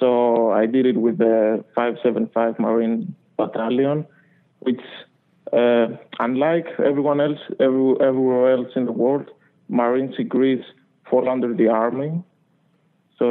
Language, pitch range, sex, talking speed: English, 115-135 Hz, male, 125 wpm